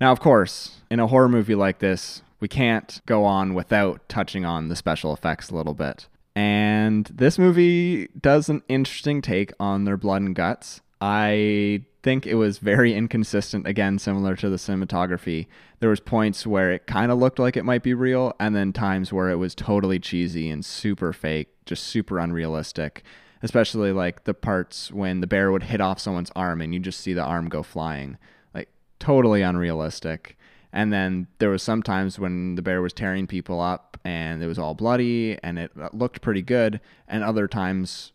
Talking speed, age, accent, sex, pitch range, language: 185 wpm, 20-39, American, male, 90-110 Hz, English